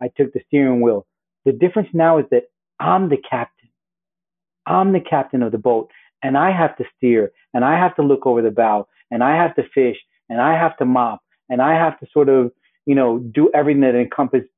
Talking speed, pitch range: 220 wpm, 125-165 Hz